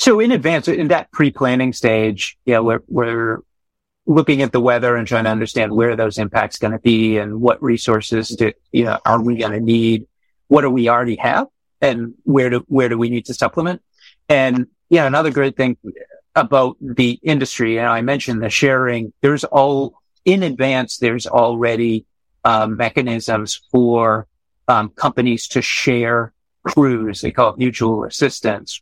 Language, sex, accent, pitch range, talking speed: English, male, American, 115-135 Hz, 180 wpm